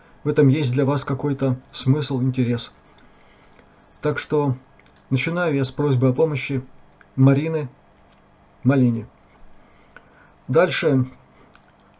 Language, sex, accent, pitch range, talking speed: Russian, male, native, 130-155 Hz, 95 wpm